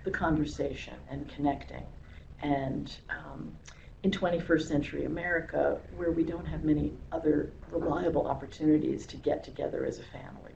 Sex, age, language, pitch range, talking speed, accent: female, 60-79, English, 140-175 Hz, 135 wpm, American